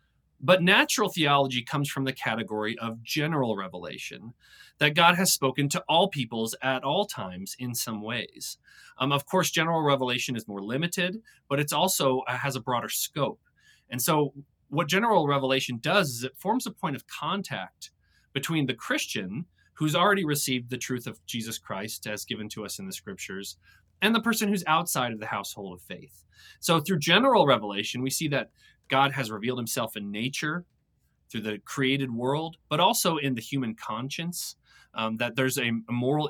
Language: English